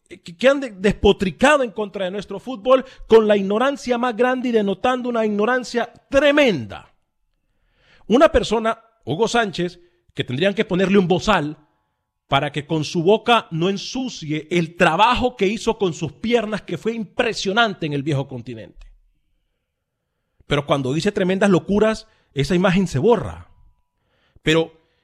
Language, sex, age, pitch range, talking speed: Spanish, male, 40-59, 145-220 Hz, 140 wpm